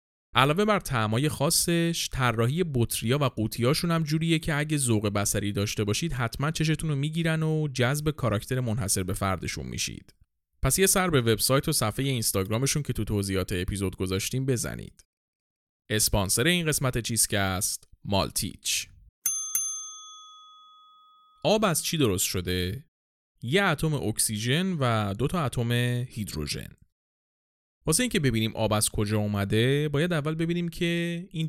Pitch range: 105-160 Hz